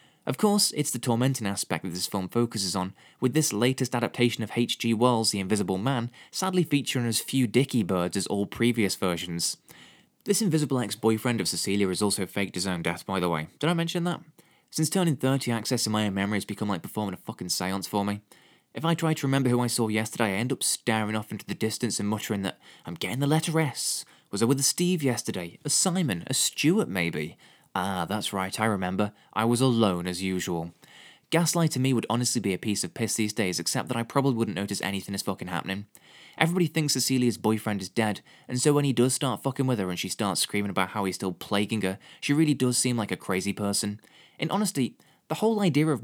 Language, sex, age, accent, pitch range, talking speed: English, male, 20-39, British, 100-130 Hz, 225 wpm